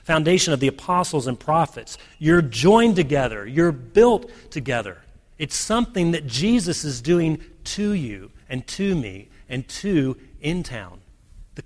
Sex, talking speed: male, 145 wpm